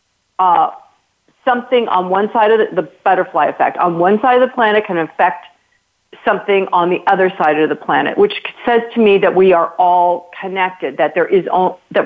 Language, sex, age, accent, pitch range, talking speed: English, female, 40-59, American, 180-220 Hz, 200 wpm